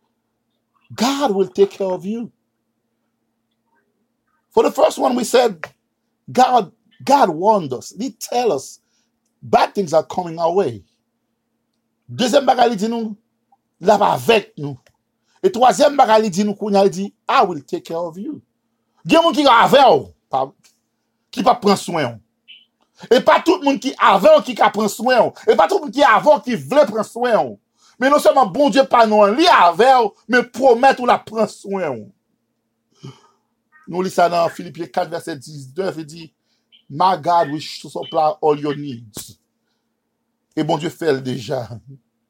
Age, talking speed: 50-69, 155 wpm